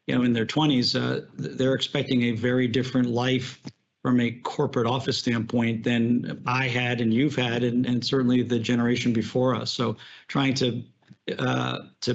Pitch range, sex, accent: 120-135 Hz, male, American